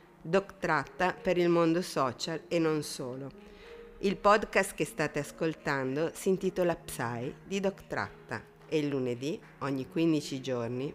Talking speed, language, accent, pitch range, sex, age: 130 wpm, Italian, native, 145-185 Hz, female, 50-69